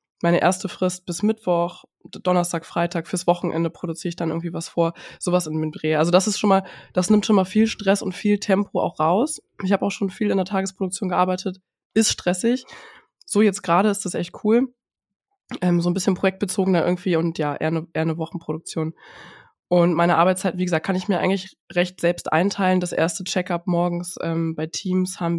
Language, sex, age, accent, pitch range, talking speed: German, female, 20-39, German, 170-195 Hz, 200 wpm